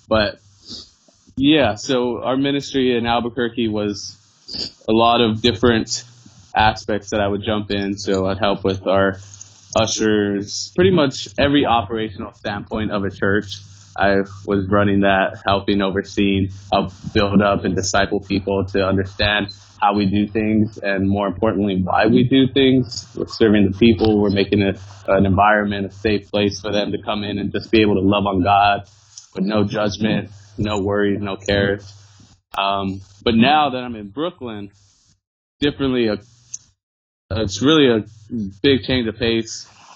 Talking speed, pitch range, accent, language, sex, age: 155 wpm, 100-115 Hz, American, English, male, 20-39